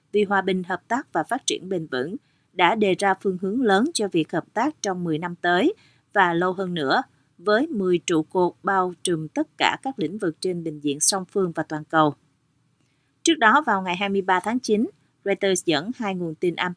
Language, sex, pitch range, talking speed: Vietnamese, female, 165-215 Hz, 215 wpm